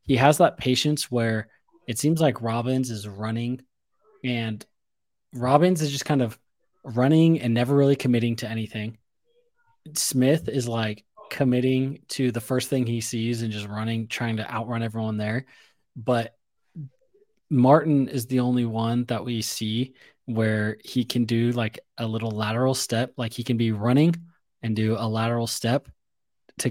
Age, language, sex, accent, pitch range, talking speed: 20-39, English, male, American, 110-130 Hz, 160 wpm